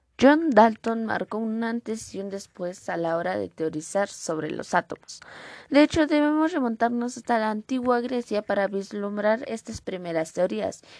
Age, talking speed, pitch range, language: 20-39, 160 wpm, 180-225 Hz, Spanish